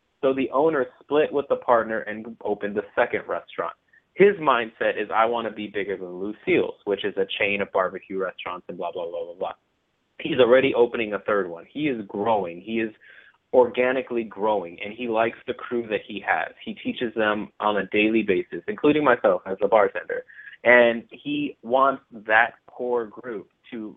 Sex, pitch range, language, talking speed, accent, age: male, 110-150 Hz, English, 190 wpm, American, 30-49